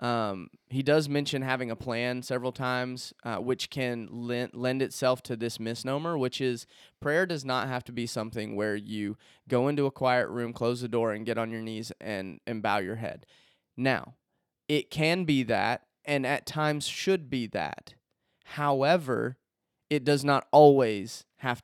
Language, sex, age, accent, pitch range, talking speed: English, male, 20-39, American, 120-145 Hz, 175 wpm